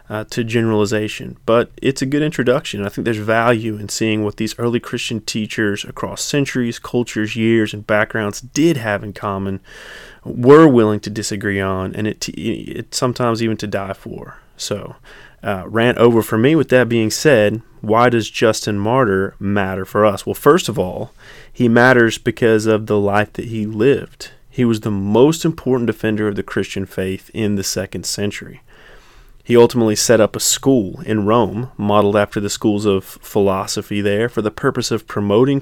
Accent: American